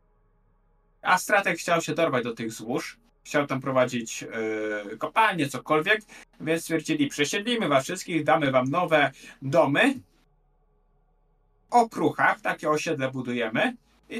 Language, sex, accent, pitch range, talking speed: Polish, male, native, 130-175 Hz, 125 wpm